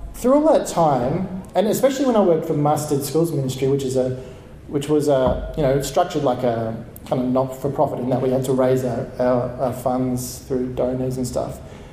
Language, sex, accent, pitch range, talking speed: English, male, Australian, 130-155 Hz, 205 wpm